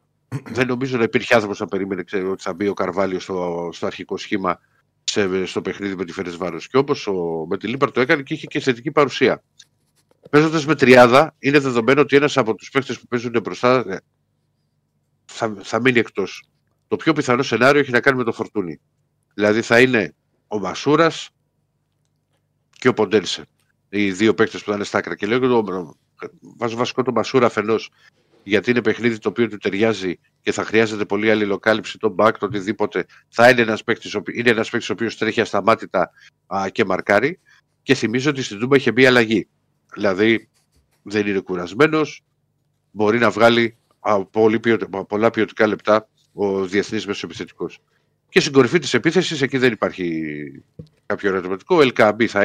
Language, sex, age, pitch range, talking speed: Greek, male, 50-69, 100-135 Hz, 165 wpm